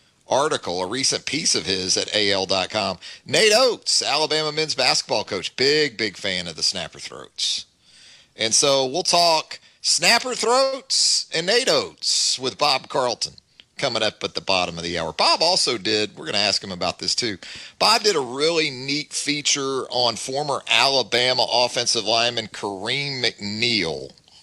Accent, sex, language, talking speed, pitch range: American, male, English, 155 wpm, 105-130 Hz